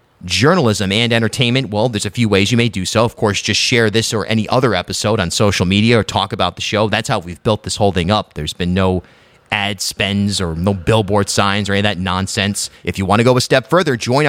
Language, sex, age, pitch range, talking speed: English, male, 30-49, 95-125 Hz, 250 wpm